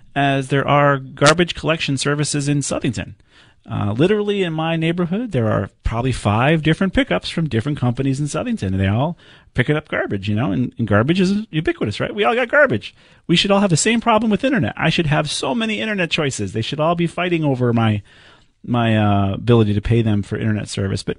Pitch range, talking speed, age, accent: 100-150 Hz, 210 wpm, 40-59, American